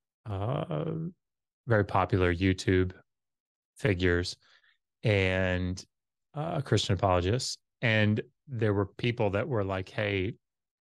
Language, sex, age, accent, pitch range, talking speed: English, male, 30-49, American, 100-130 Hz, 95 wpm